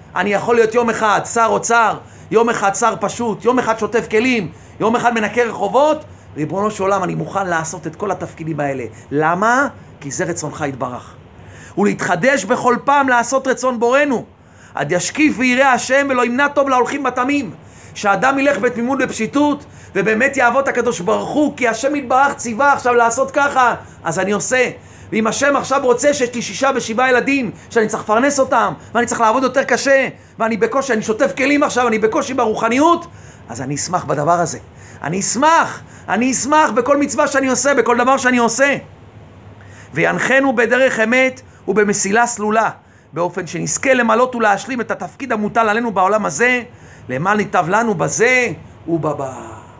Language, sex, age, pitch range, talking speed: Hebrew, male, 30-49, 180-260 Hz, 160 wpm